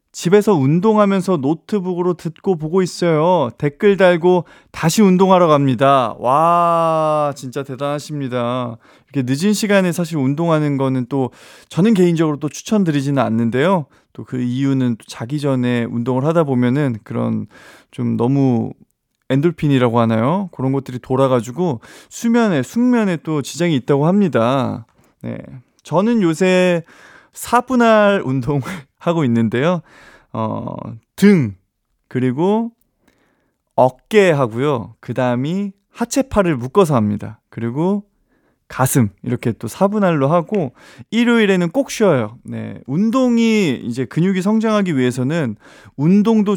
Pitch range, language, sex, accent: 125-190 Hz, Korean, male, native